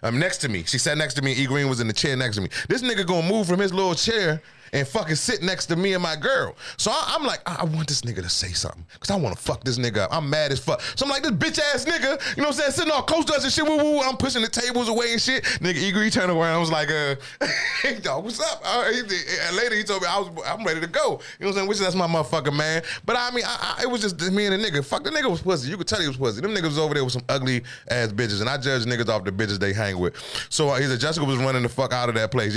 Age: 20-39